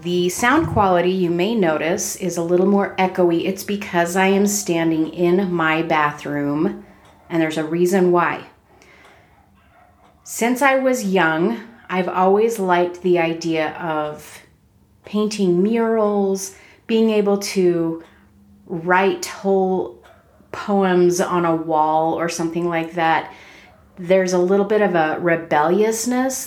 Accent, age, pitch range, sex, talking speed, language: American, 30-49, 160-195 Hz, female, 125 wpm, English